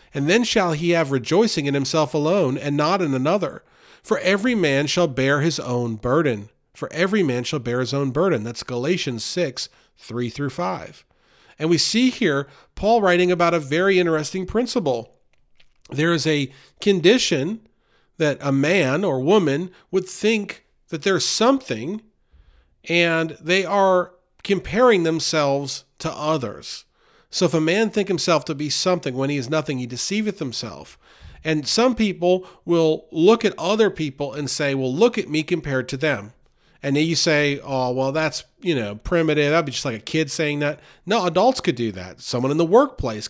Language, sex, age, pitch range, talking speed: English, male, 40-59, 135-185 Hz, 175 wpm